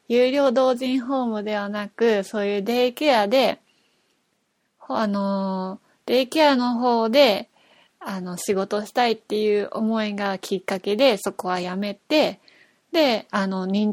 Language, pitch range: Japanese, 195-240 Hz